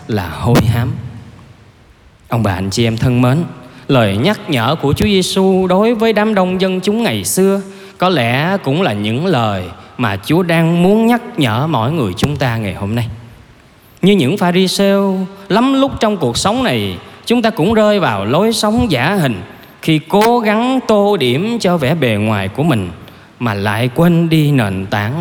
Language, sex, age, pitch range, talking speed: Vietnamese, male, 20-39, 115-185 Hz, 185 wpm